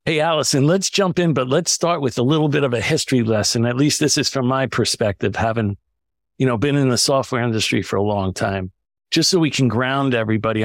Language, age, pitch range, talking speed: English, 50-69, 115-150 Hz, 230 wpm